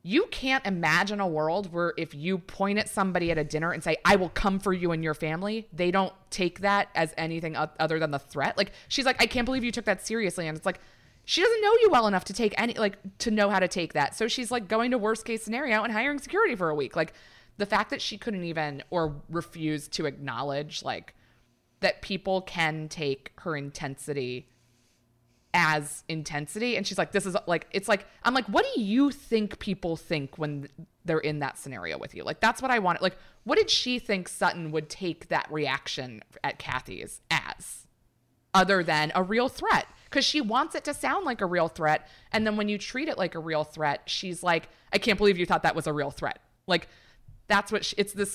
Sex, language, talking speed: female, English, 225 wpm